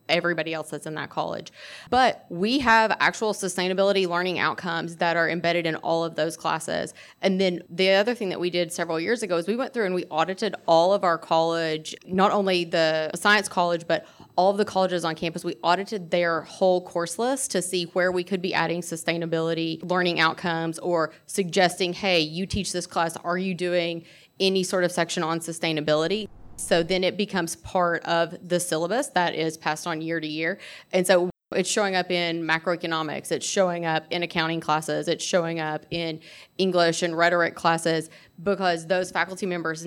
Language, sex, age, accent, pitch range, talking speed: English, female, 30-49, American, 165-190 Hz, 190 wpm